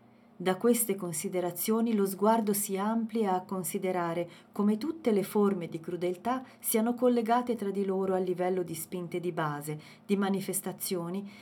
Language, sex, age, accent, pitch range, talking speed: Italian, female, 40-59, native, 165-205 Hz, 145 wpm